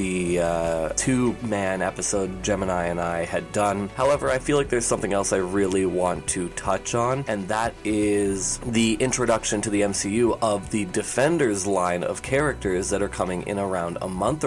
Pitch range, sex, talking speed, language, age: 95-110 Hz, male, 180 wpm, English, 20-39